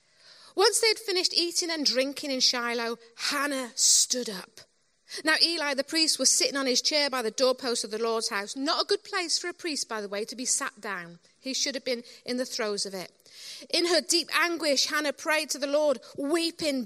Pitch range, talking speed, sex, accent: 230-315 Hz, 215 wpm, female, British